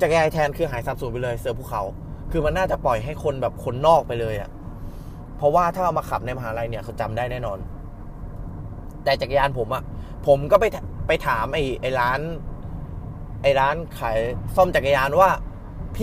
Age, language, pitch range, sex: 20-39, Thai, 110-160 Hz, male